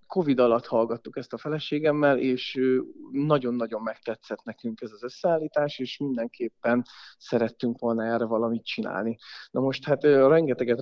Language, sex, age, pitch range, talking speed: Hungarian, male, 30-49, 120-135 Hz, 135 wpm